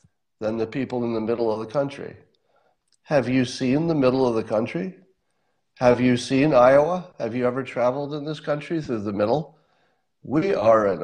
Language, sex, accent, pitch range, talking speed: English, male, American, 115-150 Hz, 185 wpm